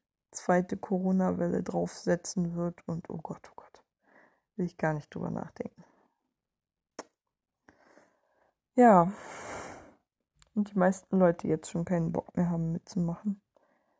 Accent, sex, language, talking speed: German, female, German, 115 wpm